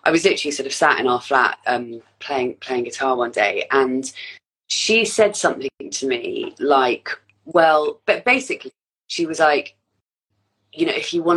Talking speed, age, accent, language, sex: 175 wpm, 20-39, British, English, female